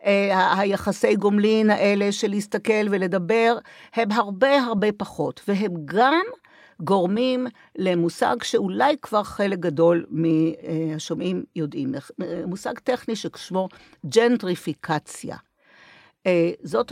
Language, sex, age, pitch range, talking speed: Hebrew, female, 50-69, 185-250 Hz, 90 wpm